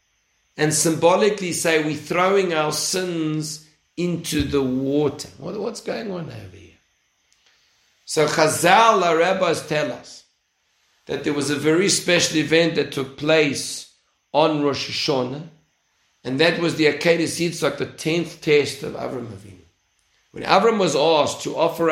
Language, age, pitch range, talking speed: English, 50-69, 150-180 Hz, 140 wpm